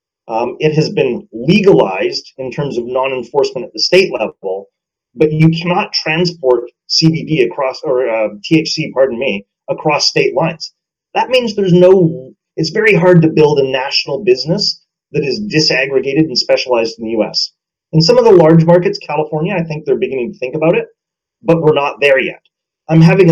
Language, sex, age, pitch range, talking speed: English, male, 30-49, 135-180 Hz, 180 wpm